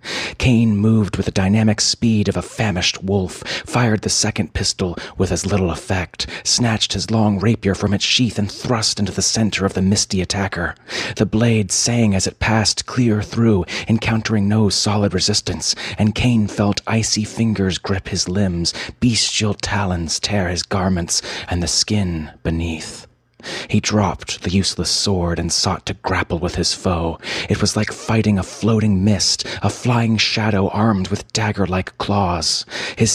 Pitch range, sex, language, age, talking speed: 95-110 Hz, male, English, 30-49, 165 wpm